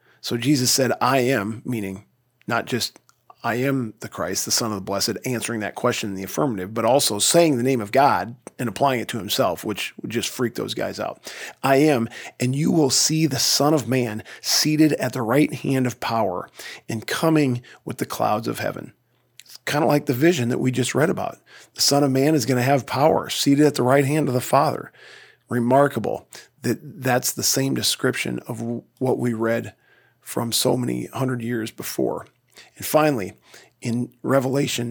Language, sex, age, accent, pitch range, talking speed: English, male, 40-59, American, 120-140 Hz, 195 wpm